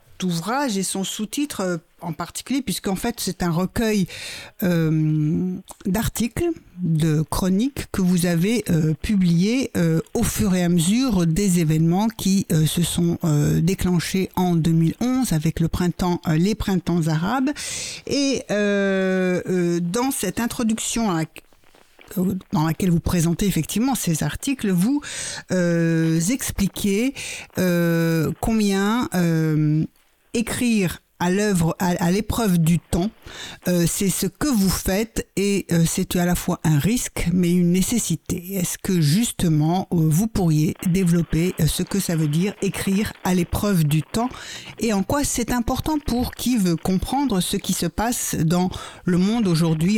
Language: French